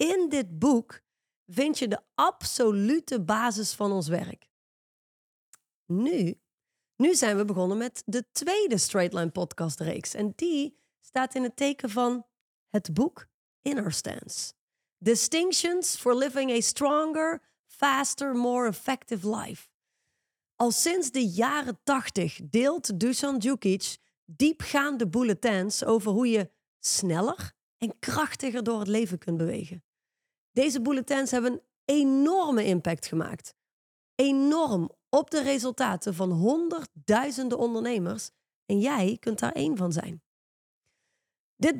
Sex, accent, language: female, Dutch, Dutch